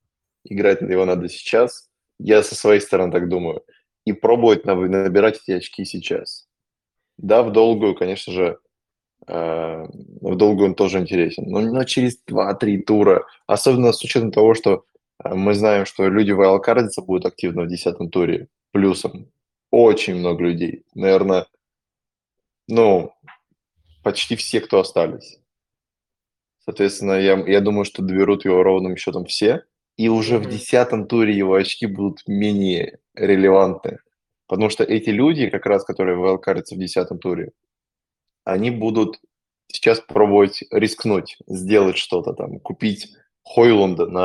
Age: 20-39